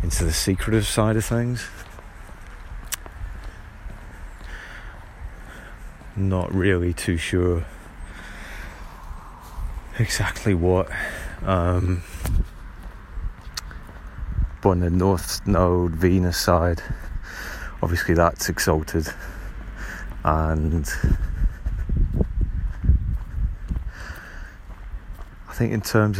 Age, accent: 30-49, British